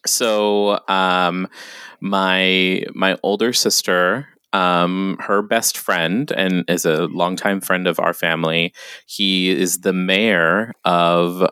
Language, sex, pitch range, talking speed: English, male, 85-100 Hz, 120 wpm